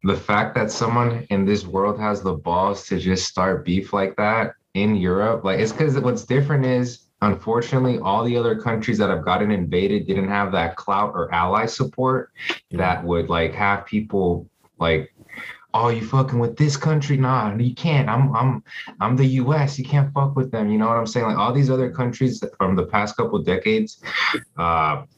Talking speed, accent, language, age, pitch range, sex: 195 wpm, American, English, 20-39, 85-110 Hz, male